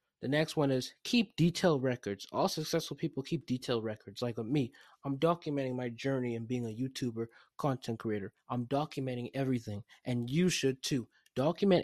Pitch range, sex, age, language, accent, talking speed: 115-140 Hz, male, 20-39, English, American, 170 wpm